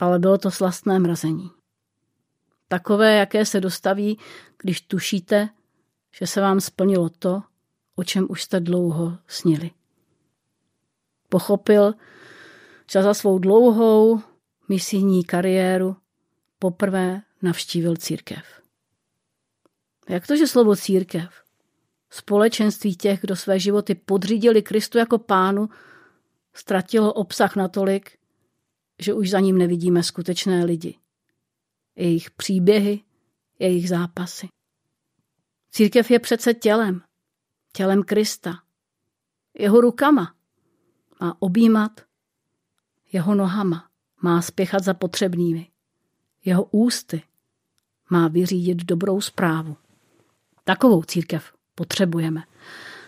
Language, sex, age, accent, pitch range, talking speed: Czech, female, 40-59, native, 175-210 Hz, 95 wpm